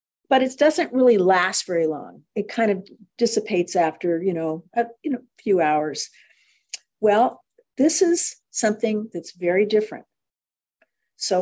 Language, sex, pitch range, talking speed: English, female, 180-245 Hz, 140 wpm